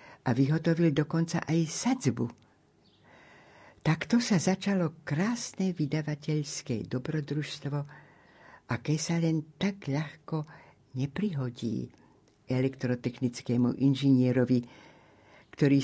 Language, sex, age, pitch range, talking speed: Slovak, female, 60-79, 120-150 Hz, 75 wpm